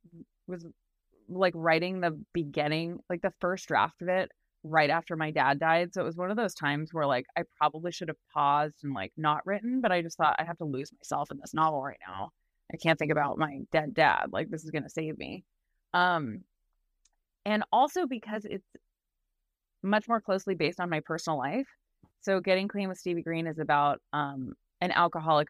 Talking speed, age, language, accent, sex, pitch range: 200 wpm, 20-39, English, American, female, 150-185 Hz